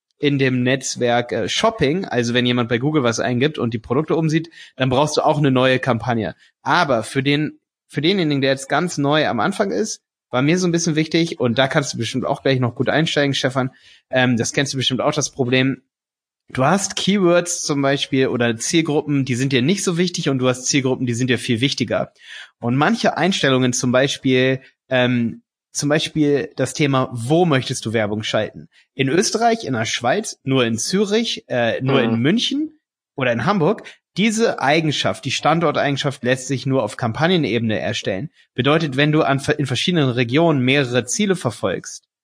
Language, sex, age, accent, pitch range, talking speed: German, male, 30-49, German, 125-155 Hz, 185 wpm